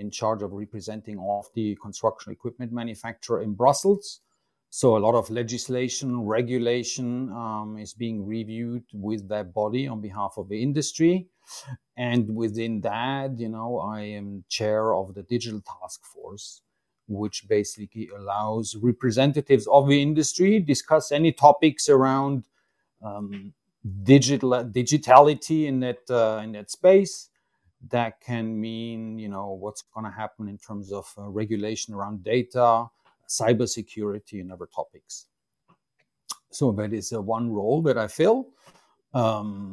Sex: male